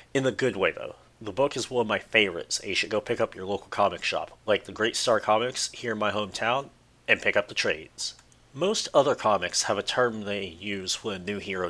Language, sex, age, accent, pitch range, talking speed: English, male, 30-49, American, 105-130 Hz, 245 wpm